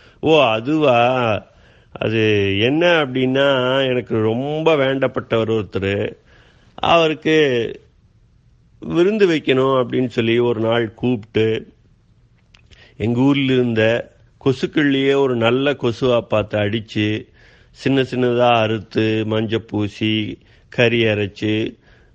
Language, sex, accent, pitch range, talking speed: Tamil, male, native, 105-130 Hz, 80 wpm